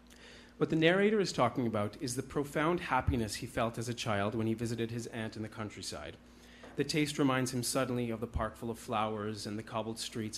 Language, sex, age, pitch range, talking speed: English, male, 30-49, 110-130 Hz, 220 wpm